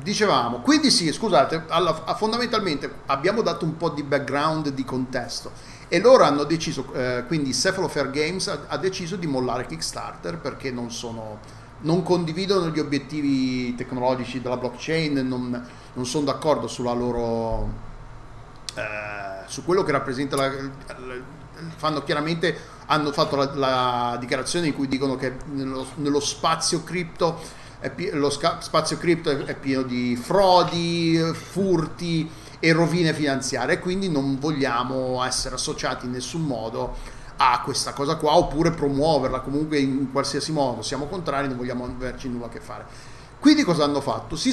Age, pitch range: 40-59, 130-170 Hz